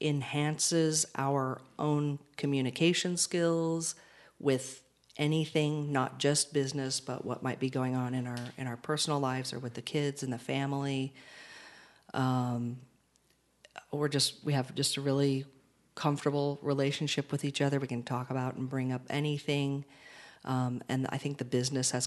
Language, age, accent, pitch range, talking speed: English, 40-59, American, 130-150 Hz, 155 wpm